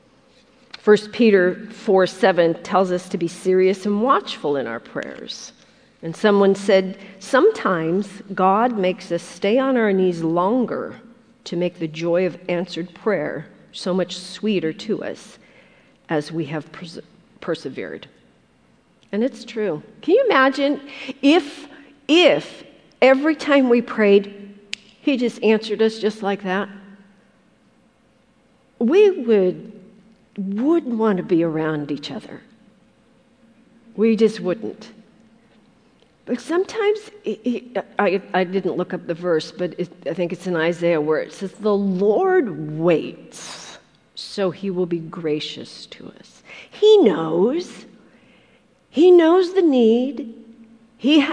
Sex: female